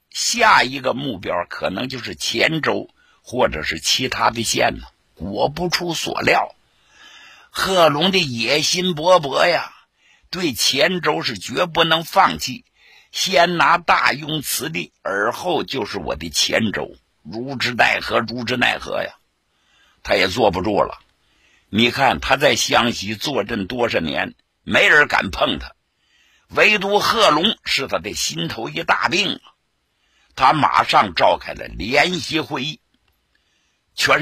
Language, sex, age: Chinese, male, 60-79